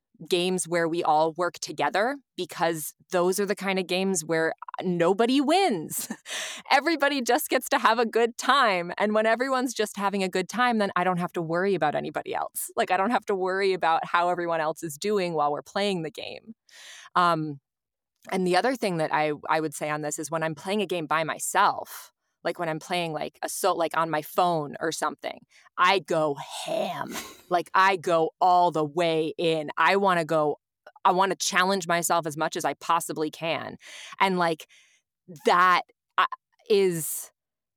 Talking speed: 190 wpm